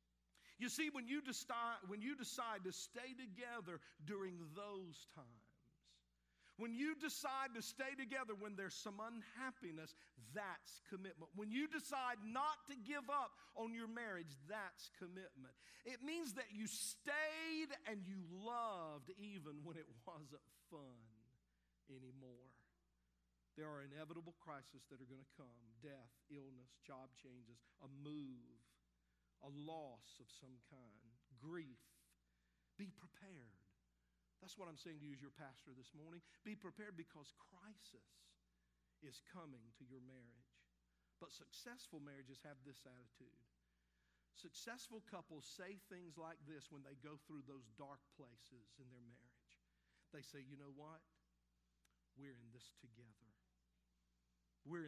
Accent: American